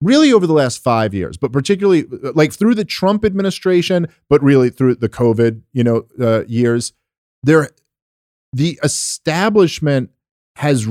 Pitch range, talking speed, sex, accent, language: 115-155 Hz, 140 wpm, male, American, English